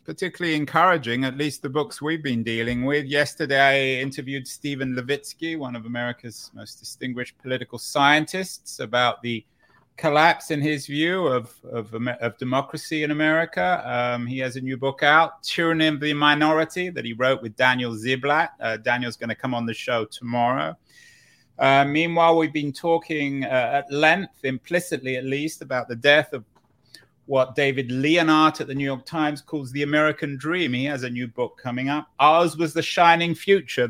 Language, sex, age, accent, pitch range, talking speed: English, male, 30-49, British, 125-160 Hz, 175 wpm